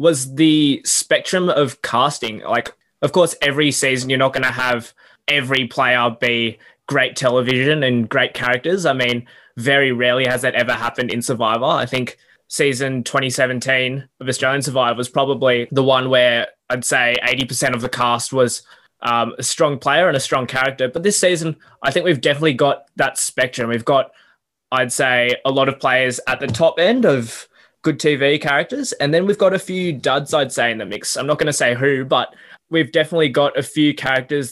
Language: English